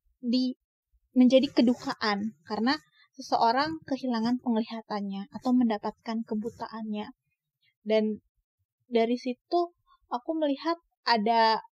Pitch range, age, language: 215-260 Hz, 20-39, Indonesian